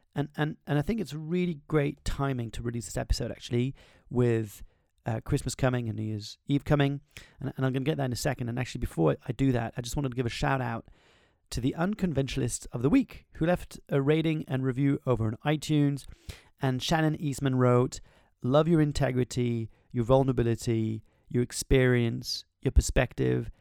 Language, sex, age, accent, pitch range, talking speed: English, male, 30-49, British, 120-150 Hz, 190 wpm